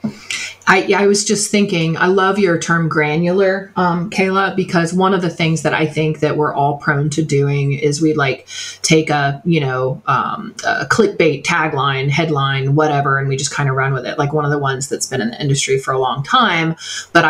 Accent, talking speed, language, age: American, 220 wpm, English, 30-49